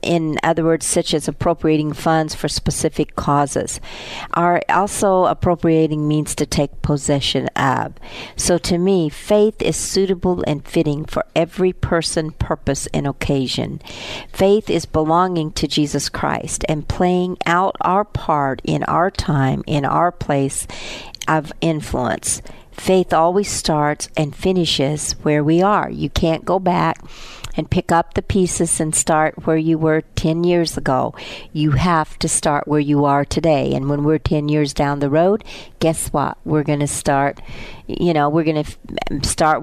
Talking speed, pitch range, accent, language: 155 wpm, 145-175 Hz, American, English